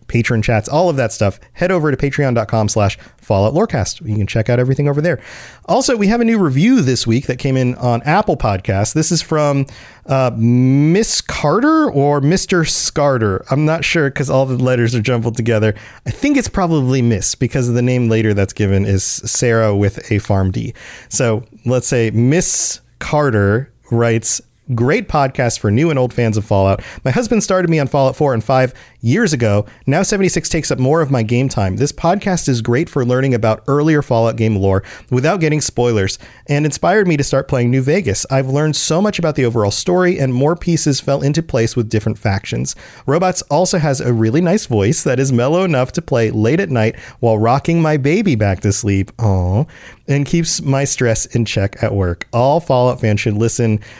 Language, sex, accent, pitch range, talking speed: English, male, American, 110-150 Hz, 200 wpm